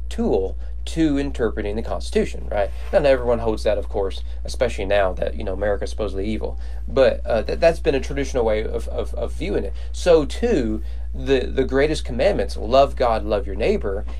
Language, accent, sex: English, American, male